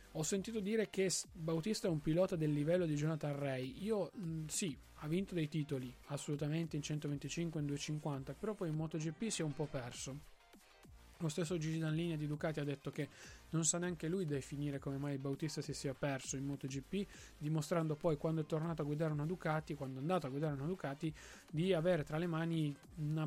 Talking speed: 200 wpm